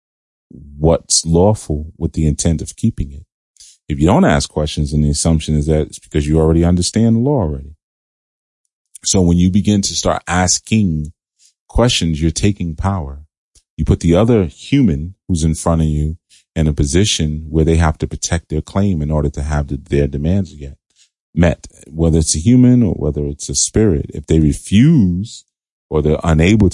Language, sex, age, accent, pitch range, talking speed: English, male, 30-49, American, 75-90 Hz, 180 wpm